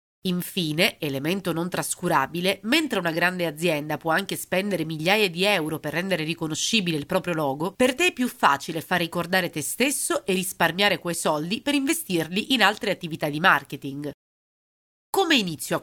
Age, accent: 30-49, native